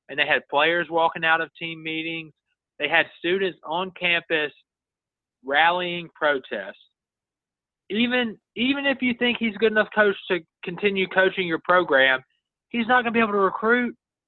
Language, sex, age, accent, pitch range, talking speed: English, male, 20-39, American, 145-180 Hz, 165 wpm